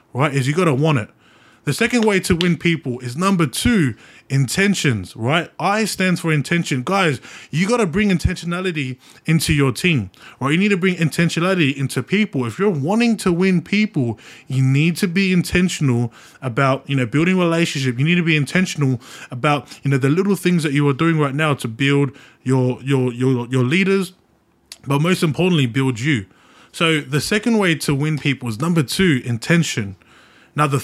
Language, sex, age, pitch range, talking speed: English, male, 20-39, 130-180 Hz, 190 wpm